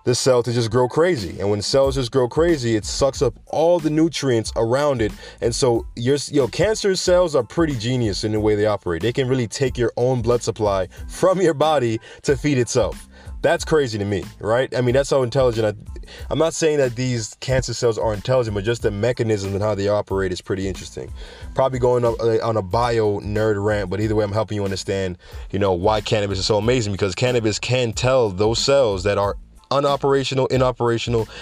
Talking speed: 210 wpm